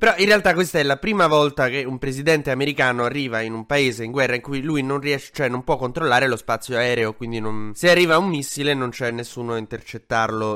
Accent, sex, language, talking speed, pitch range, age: native, male, Italian, 235 wpm, 115-145 Hz, 20-39